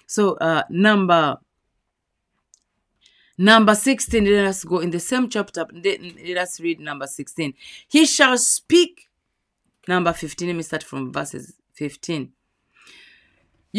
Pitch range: 180-240 Hz